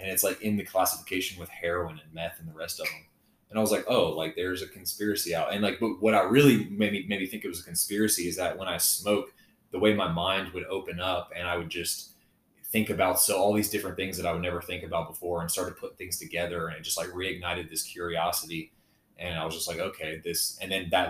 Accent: American